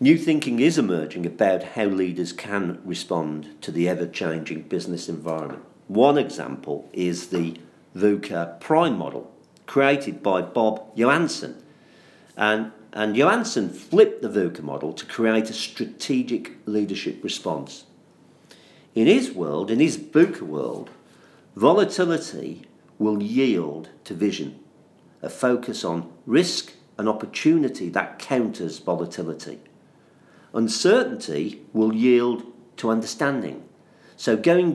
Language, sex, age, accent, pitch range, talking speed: English, male, 50-69, British, 90-130 Hz, 115 wpm